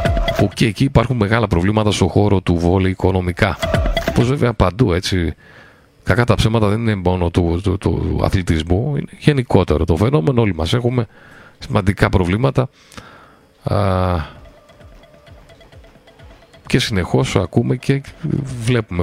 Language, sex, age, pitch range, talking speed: Greek, male, 40-59, 95-125 Hz, 125 wpm